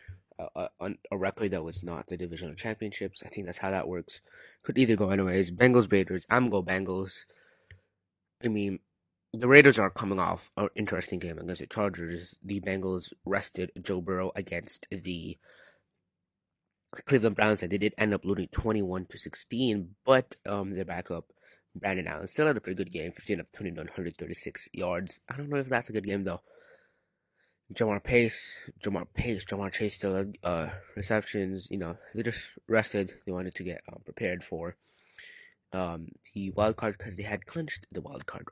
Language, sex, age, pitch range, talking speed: English, male, 30-49, 90-105 Hz, 180 wpm